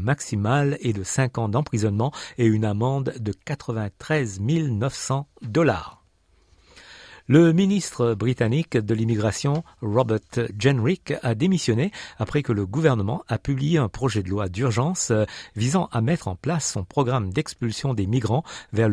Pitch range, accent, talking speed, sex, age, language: 105-140 Hz, French, 140 wpm, male, 50-69, French